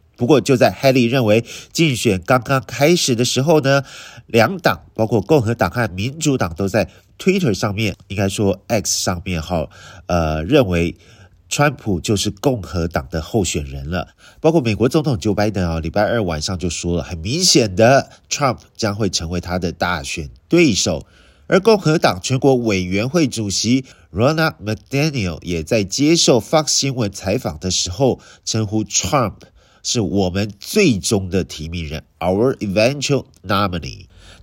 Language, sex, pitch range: Chinese, male, 90-125 Hz